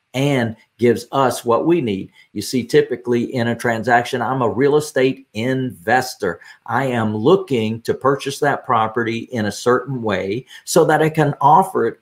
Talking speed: 170 wpm